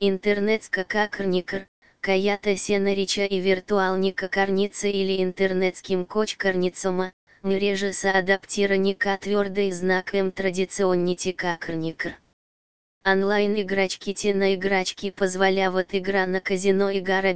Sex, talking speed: female, 80 wpm